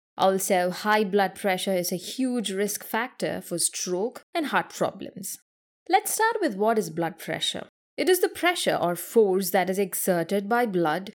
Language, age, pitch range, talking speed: English, 20-39, 185-255 Hz, 170 wpm